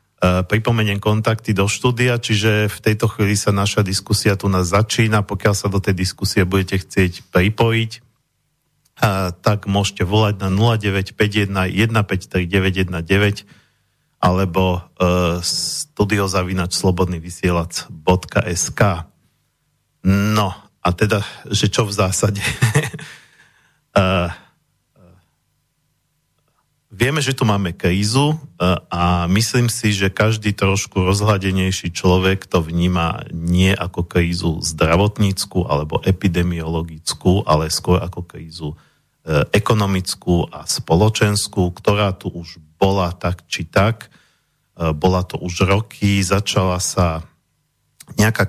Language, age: Slovak, 40-59